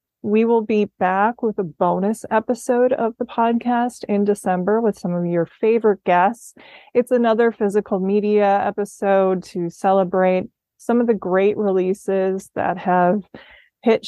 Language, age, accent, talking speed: English, 20-39, American, 145 wpm